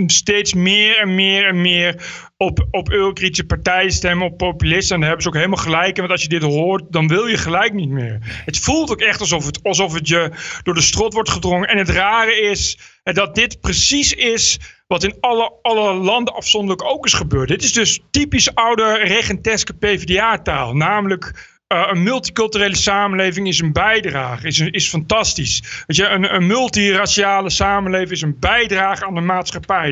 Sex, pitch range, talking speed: male, 175-215 Hz, 190 wpm